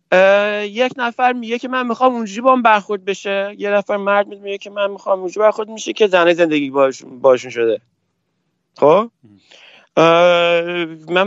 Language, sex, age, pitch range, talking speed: Persian, male, 30-49, 160-215 Hz, 150 wpm